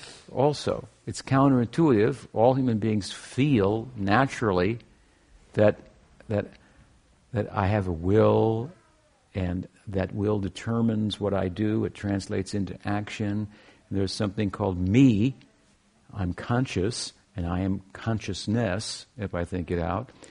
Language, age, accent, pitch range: English, 60-79, American, 95-115 Hz